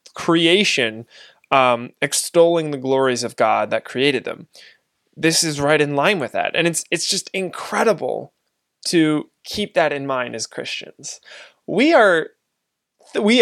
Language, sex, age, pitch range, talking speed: English, male, 20-39, 130-175 Hz, 145 wpm